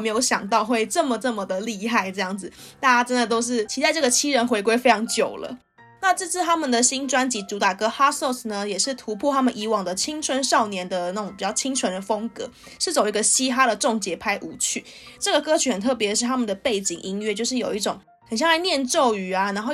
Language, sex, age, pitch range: Chinese, female, 20-39, 210-265 Hz